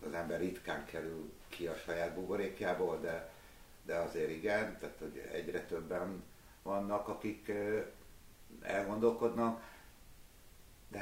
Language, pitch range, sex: Hungarian, 85-110 Hz, male